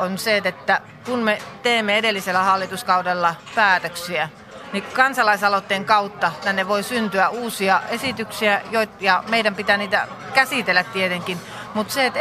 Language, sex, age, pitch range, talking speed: Finnish, female, 30-49, 185-230 Hz, 130 wpm